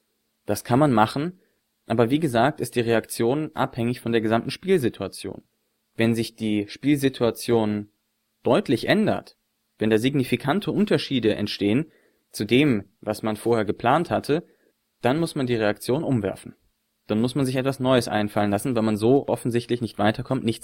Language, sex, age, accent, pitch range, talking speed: German, male, 30-49, German, 110-130 Hz, 155 wpm